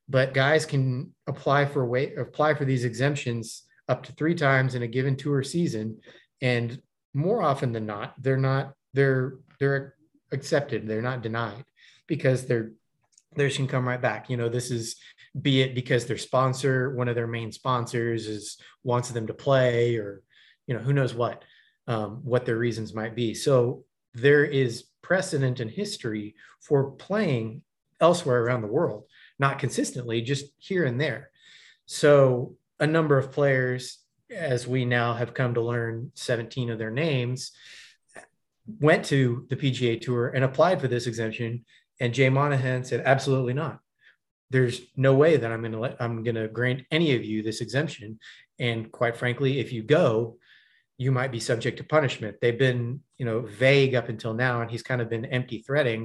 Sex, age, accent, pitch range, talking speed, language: male, 30-49, American, 120-140 Hz, 175 wpm, English